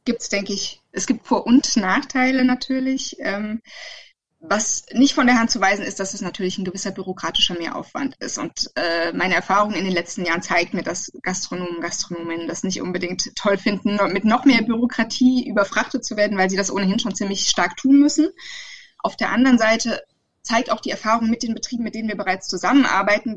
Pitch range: 190-230 Hz